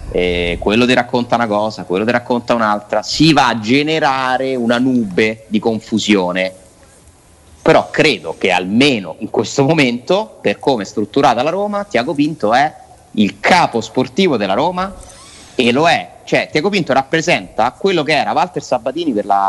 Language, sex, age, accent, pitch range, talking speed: Italian, male, 30-49, native, 100-140 Hz, 165 wpm